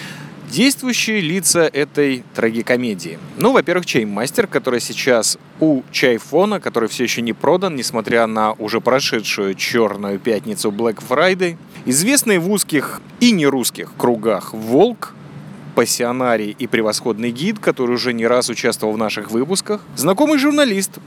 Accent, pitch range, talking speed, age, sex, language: native, 125-190 Hz, 130 wpm, 30-49, male, Russian